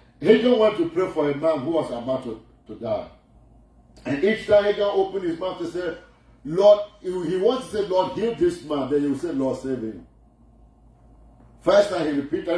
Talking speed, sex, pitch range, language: 220 wpm, male, 130-205 Hz, English